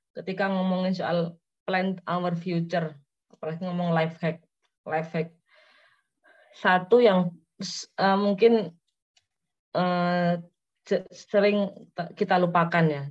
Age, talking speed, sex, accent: 20-39, 105 wpm, female, native